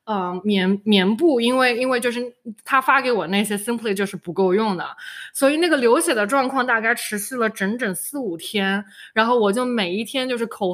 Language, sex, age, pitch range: Chinese, female, 20-39, 205-305 Hz